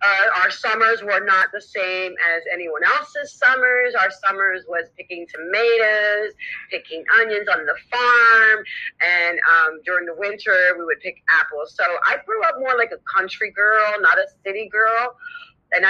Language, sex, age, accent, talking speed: English, female, 40-59, American, 165 wpm